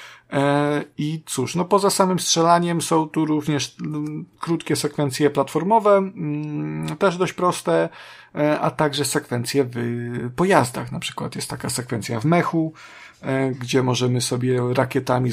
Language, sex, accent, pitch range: Polish, male, native, 120-150 Hz